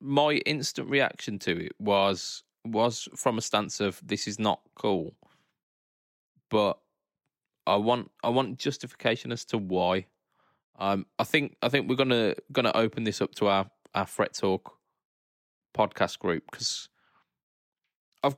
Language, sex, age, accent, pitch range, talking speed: English, male, 20-39, British, 95-120 Hz, 150 wpm